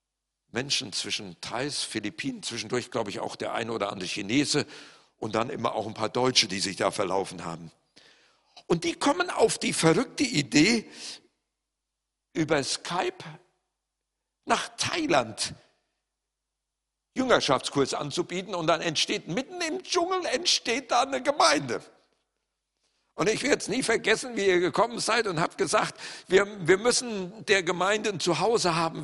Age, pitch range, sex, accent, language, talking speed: 50-69, 140-200 Hz, male, German, German, 145 wpm